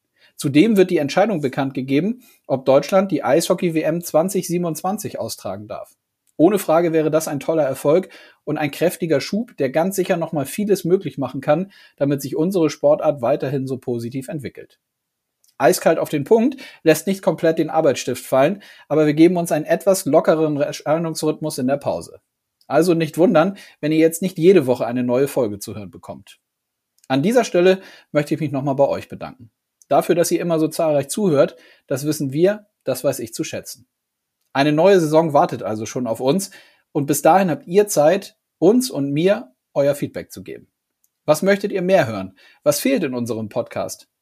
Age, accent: 40-59, German